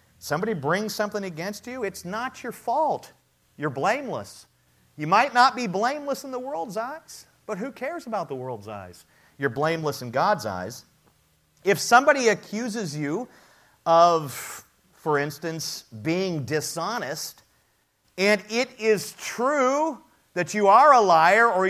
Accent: American